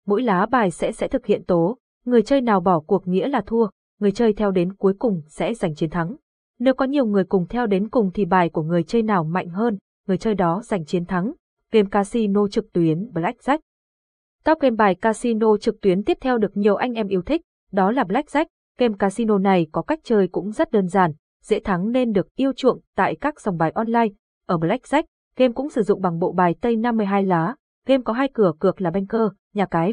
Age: 20-39